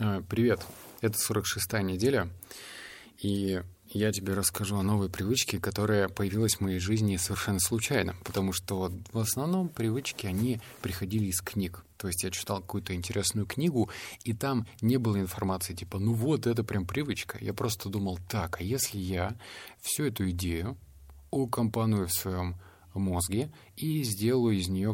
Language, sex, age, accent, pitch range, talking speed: Russian, male, 20-39, native, 95-110 Hz, 150 wpm